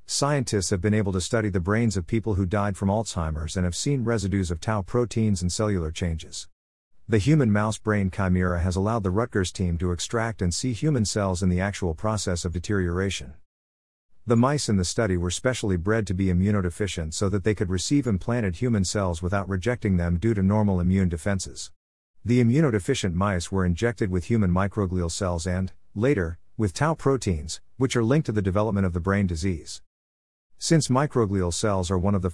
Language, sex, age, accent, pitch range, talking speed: English, male, 50-69, American, 90-110 Hz, 195 wpm